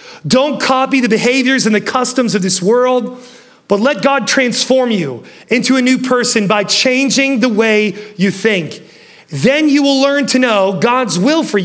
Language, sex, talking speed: English, male, 175 wpm